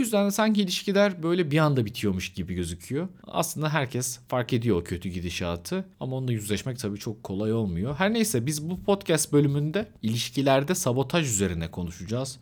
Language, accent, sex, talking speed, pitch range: Turkish, native, male, 170 wpm, 105-145 Hz